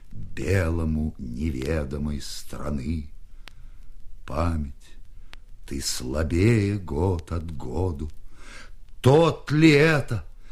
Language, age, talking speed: Russian, 50-69, 70 wpm